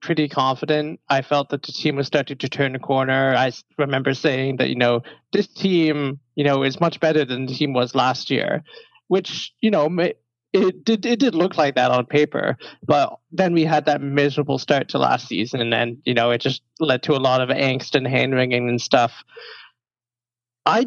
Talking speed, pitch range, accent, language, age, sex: 200 wpm, 130-155 Hz, American, English, 20-39, male